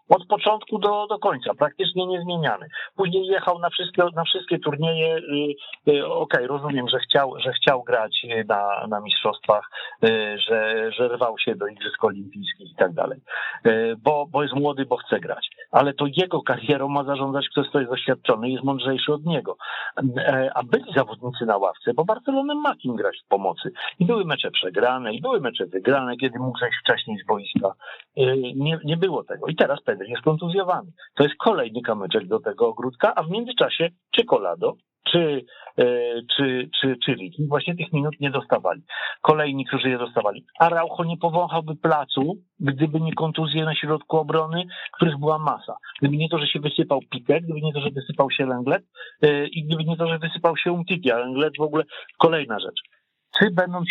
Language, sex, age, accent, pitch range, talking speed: Polish, male, 50-69, native, 135-175 Hz, 180 wpm